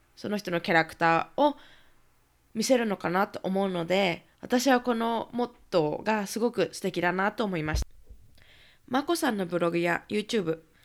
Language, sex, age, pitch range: Japanese, female, 20-39, 175-255 Hz